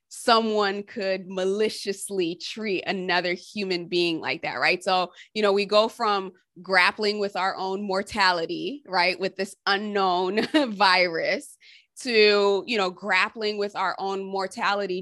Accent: American